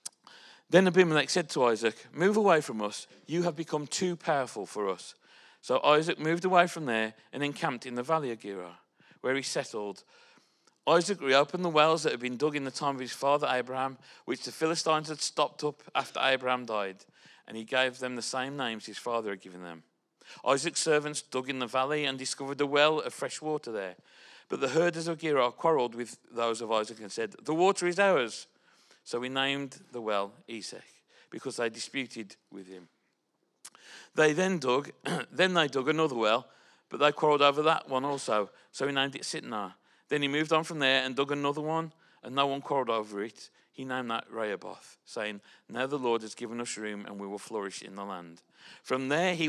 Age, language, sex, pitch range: 40-59, English, male, 120-155 Hz